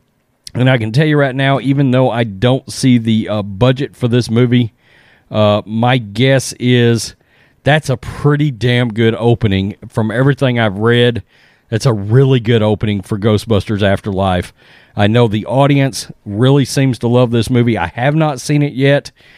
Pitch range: 110-140 Hz